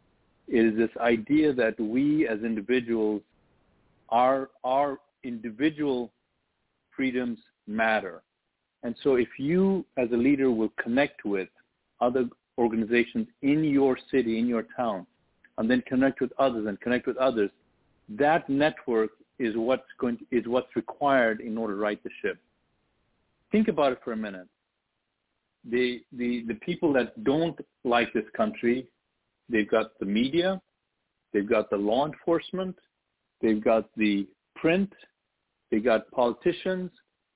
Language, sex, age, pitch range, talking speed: English, male, 50-69, 115-150 Hz, 135 wpm